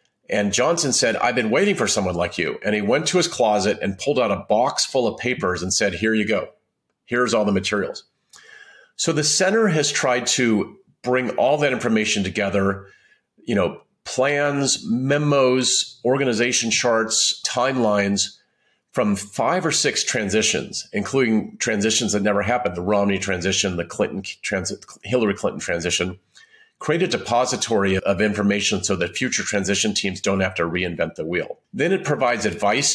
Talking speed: 165 wpm